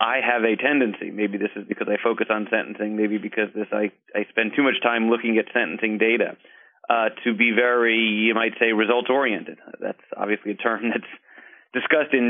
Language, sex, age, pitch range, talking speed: English, male, 30-49, 115-130 Hz, 200 wpm